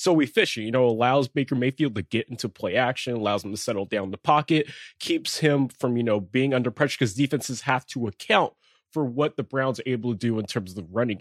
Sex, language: male, English